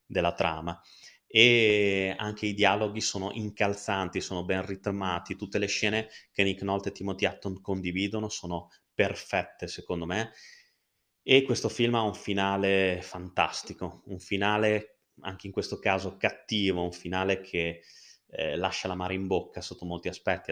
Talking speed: 150 wpm